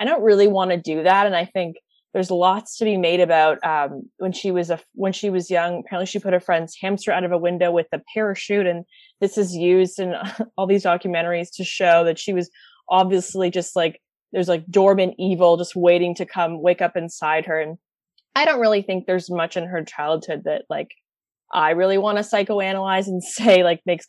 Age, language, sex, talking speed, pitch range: 20-39, English, female, 215 wpm, 165-195 Hz